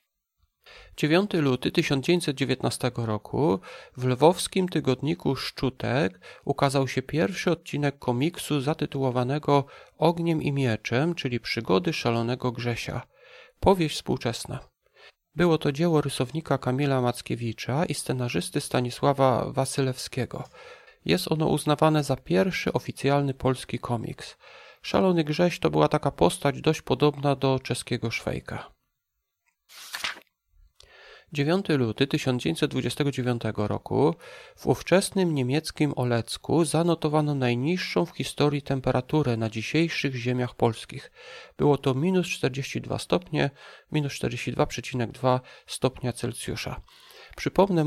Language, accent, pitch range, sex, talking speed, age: Polish, native, 125-150 Hz, male, 100 wpm, 40-59